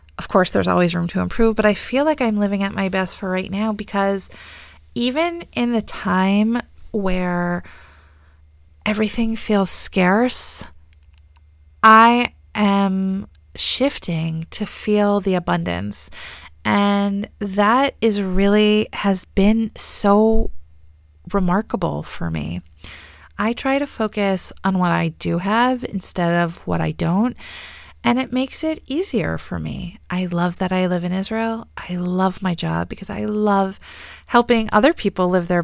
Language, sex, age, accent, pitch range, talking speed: English, female, 30-49, American, 170-220 Hz, 145 wpm